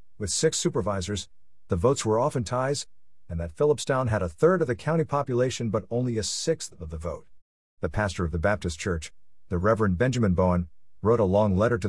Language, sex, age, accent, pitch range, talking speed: English, male, 50-69, American, 95-125 Hz, 200 wpm